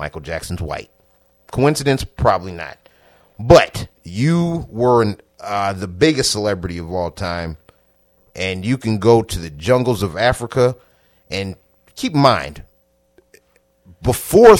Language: English